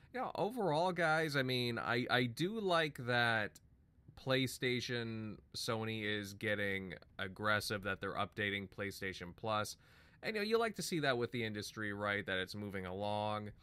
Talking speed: 165 wpm